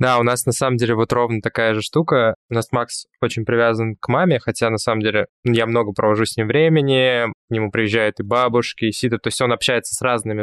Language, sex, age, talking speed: Russian, male, 20-39, 235 wpm